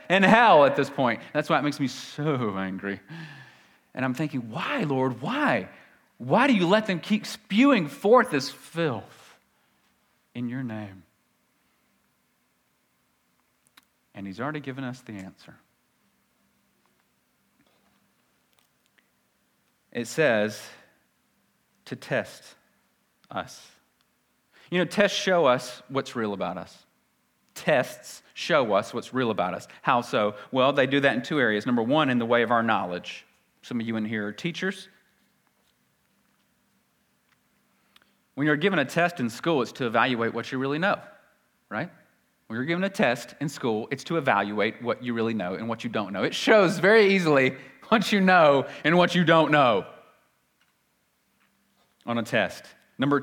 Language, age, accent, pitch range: English, 40-59, American, 115-175 Hz